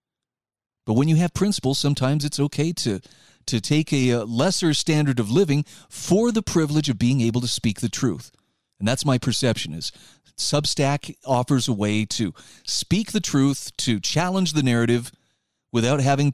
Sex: male